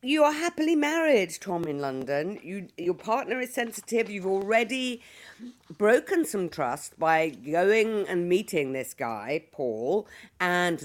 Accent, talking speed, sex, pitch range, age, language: British, 135 wpm, female, 150-215 Hz, 50-69, English